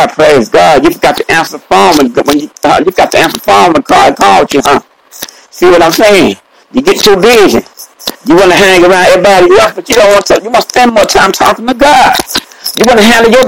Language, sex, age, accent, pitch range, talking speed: English, male, 60-79, American, 245-315 Hz, 235 wpm